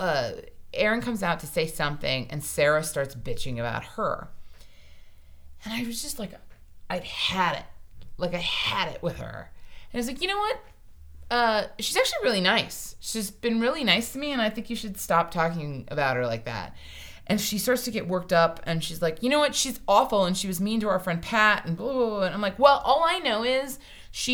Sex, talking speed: female, 225 wpm